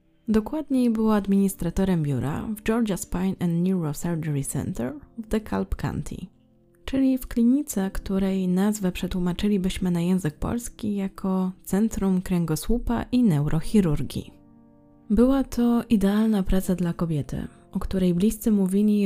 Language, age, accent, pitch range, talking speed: Polish, 20-39, native, 165-215 Hz, 115 wpm